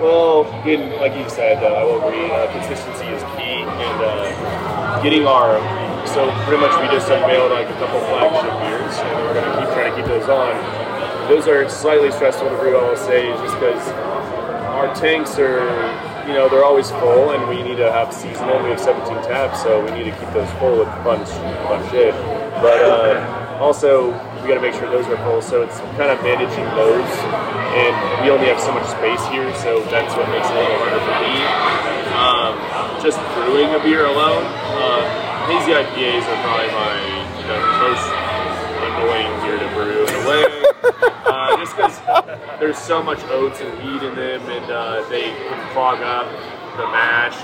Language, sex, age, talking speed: English, male, 30-49, 195 wpm